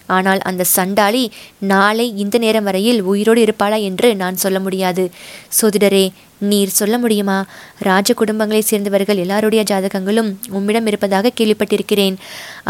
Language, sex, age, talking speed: Tamil, female, 20-39, 110 wpm